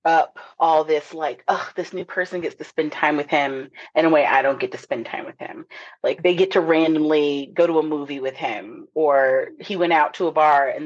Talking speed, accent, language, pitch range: 245 wpm, American, English, 155-205 Hz